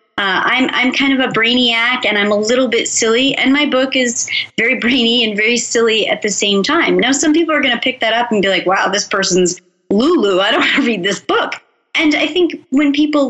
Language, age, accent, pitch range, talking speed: English, 30-49, American, 215-285 Hz, 245 wpm